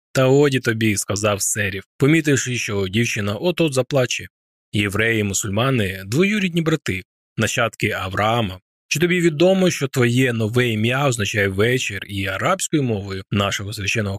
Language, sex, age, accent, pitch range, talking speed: Ukrainian, male, 20-39, native, 100-140 Hz, 125 wpm